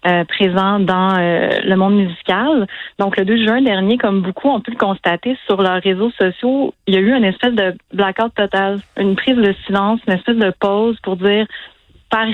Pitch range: 190-225 Hz